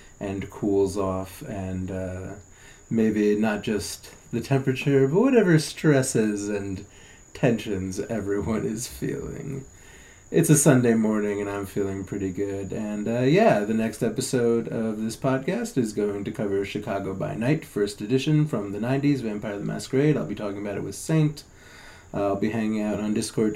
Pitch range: 105-145 Hz